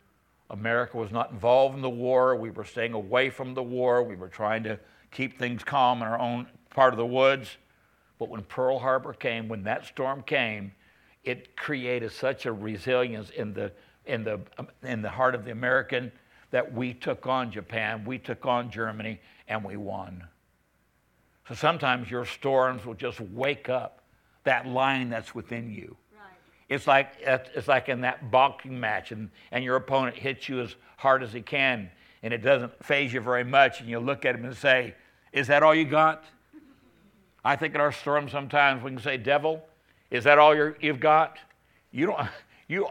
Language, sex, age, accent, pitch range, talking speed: English, male, 60-79, American, 120-150 Hz, 185 wpm